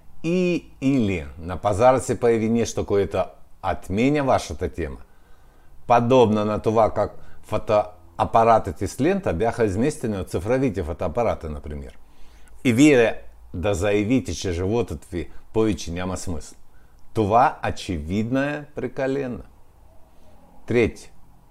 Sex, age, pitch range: male, 50-69, 85-120 Hz